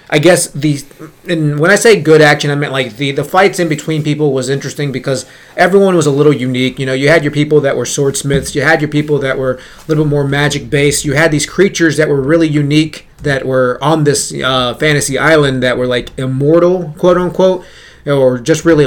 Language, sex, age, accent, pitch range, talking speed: English, male, 30-49, American, 135-170 Hz, 225 wpm